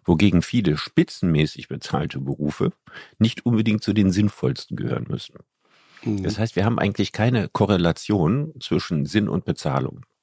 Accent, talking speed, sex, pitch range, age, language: German, 140 wpm, male, 85-110 Hz, 50-69, German